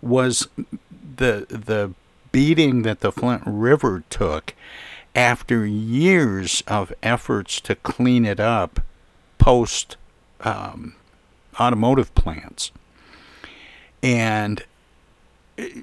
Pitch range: 95-125 Hz